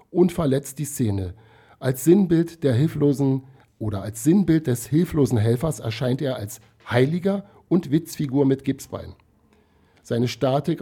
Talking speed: 135 wpm